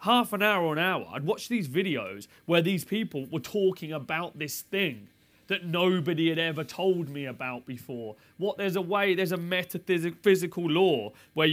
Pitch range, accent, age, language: 145-185 Hz, British, 30-49, English